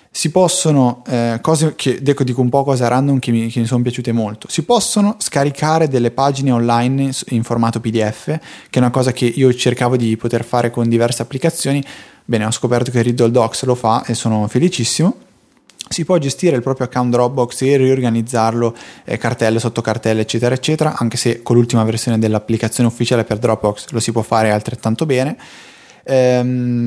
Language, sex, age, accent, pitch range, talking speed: Italian, male, 20-39, native, 115-135 Hz, 180 wpm